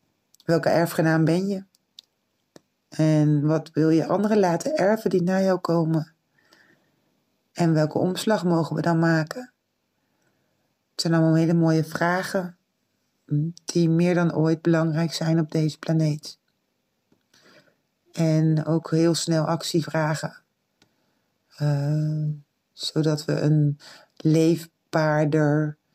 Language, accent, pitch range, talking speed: Dutch, Dutch, 155-170 Hz, 110 wpm